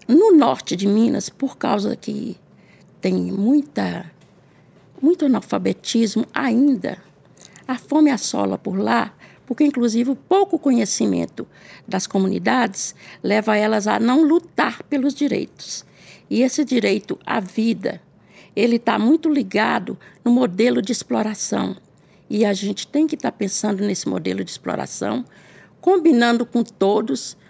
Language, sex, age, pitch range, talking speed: Portuguese, female, 60-79, 205-285 Hz, 125 wpm